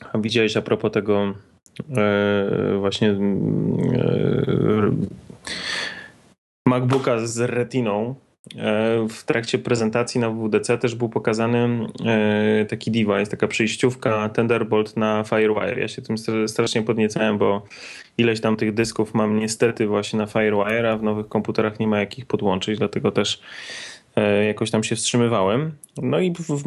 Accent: native